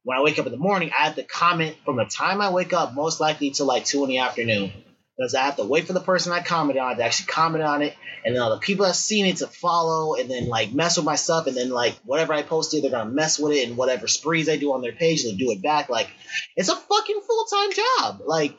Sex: male